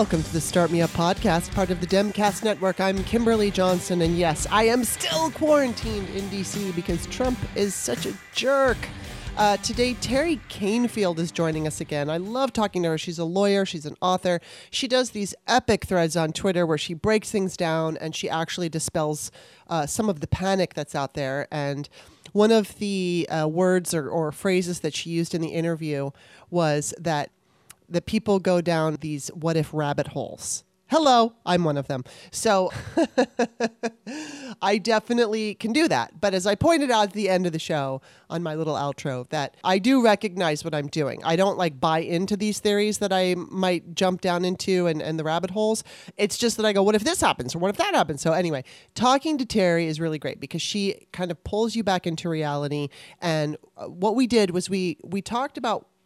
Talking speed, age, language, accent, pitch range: 200 wpm, 30-49, English, American, 160-215 Hz